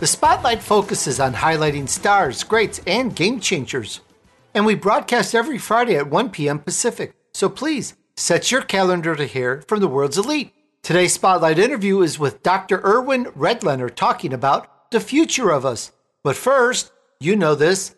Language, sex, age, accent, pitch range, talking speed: English, male, 50-69, American, 160-230 Hz, 165 wpm